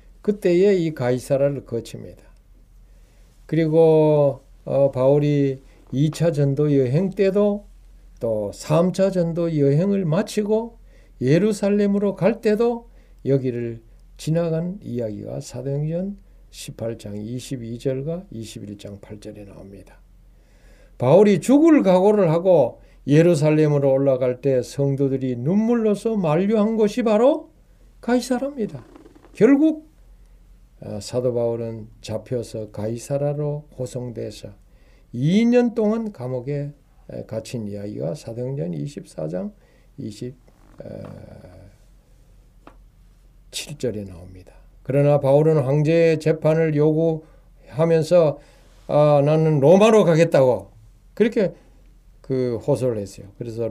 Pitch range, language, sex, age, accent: 120-180 Hz, Korean, male, 60-79, native